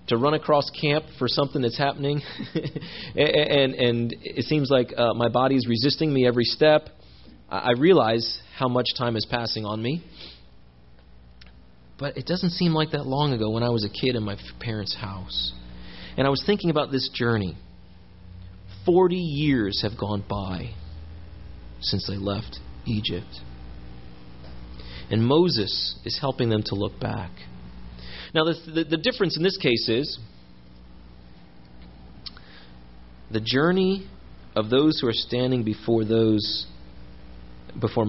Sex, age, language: male, 30-49, English